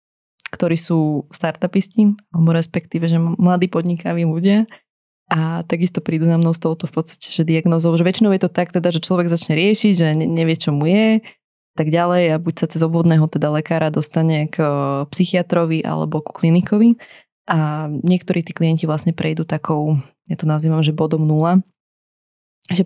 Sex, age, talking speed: female, 20-39, 170 wpm